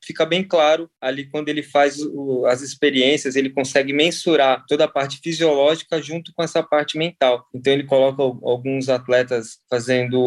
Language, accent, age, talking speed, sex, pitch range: Portuguese, Brazilian, 20-39, 170 wpm, male, 130-165 Hz